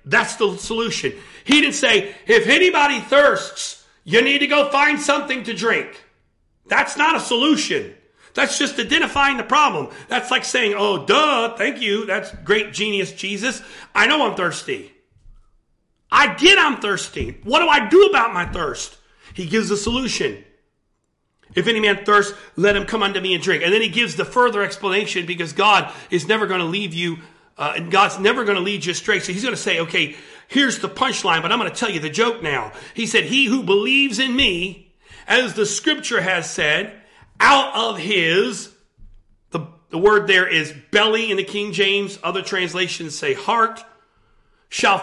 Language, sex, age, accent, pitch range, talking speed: English, male, 40-59, American, 185-255 Hz, 185 wpm